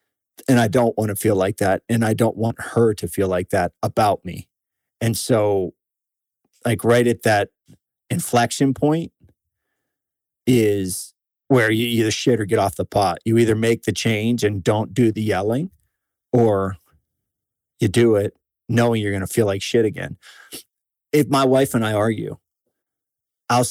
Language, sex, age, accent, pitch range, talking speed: English, male, 40-59, American, 100-125 Hz, 165 wpm